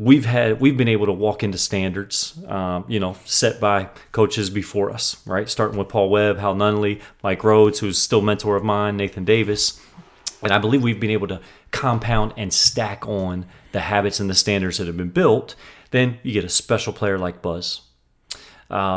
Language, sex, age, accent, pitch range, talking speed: English, male, 30-49, American, 95-120 Hz, 200 wpm